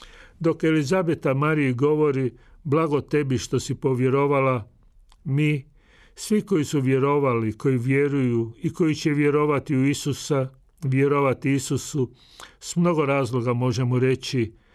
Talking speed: 120 wpm